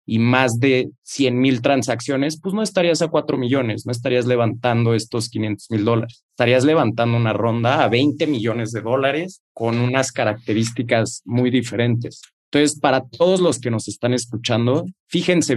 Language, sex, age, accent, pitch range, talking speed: Spanish, male, 30-49, Mexican, 115-140 Hz, 160 wpm